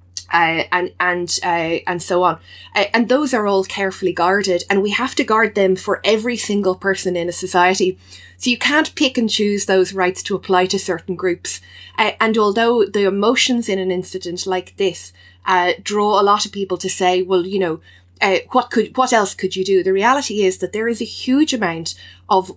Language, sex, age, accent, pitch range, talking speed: English, female, 20-39, Irish, 180-215 Hz, 210 wpm